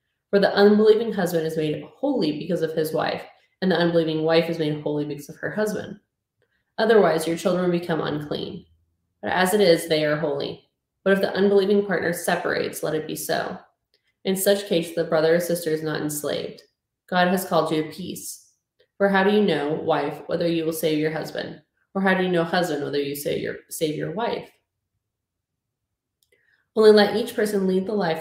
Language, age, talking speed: English, 20-39, 200 wpm